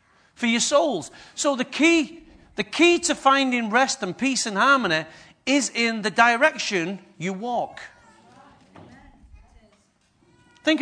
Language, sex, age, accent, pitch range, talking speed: English, male, 40-59, British, 215-280 Hz, 120 wpm